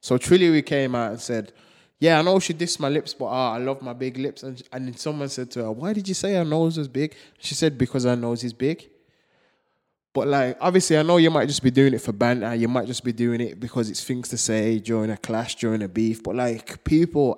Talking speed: 260 wpm